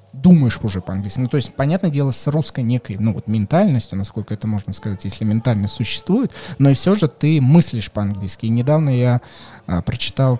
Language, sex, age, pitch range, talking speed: Russian, male, 20-39, 115-140 Hz, 190 wpm